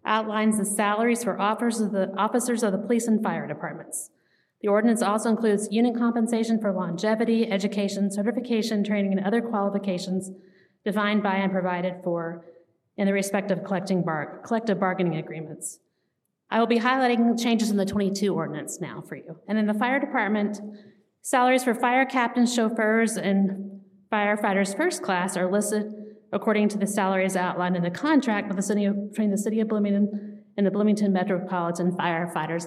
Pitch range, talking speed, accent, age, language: 190-230 Hz, 155 wpm, American, 30-49, English